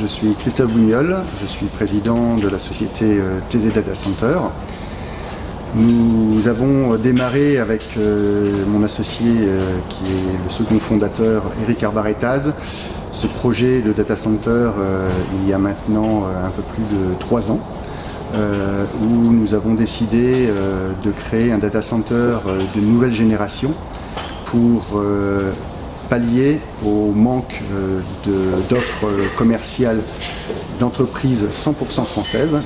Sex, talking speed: male, 115 wpm